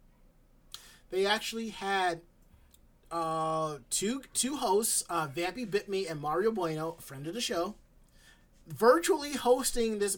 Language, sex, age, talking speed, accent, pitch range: English, male, 30-49, 130 wpm, American, 165-220 Hz